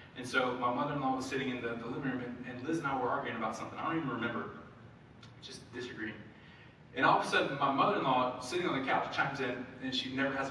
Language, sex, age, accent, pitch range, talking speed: English, male, 20-39, American, 125-190 Hz, 235 wpm